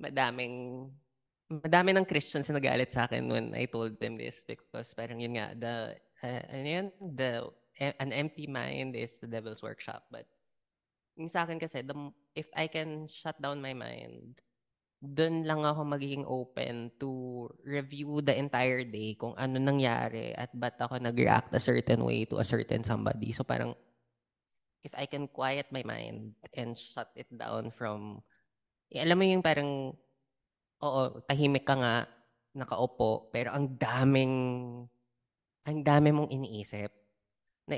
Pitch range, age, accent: 115-145 Hz, 20-39, Filipino